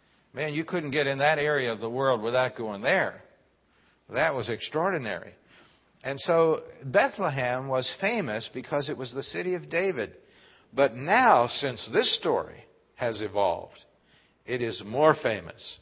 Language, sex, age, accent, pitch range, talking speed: English, male, 60-79, American, 115-155 Hz, 150 wpm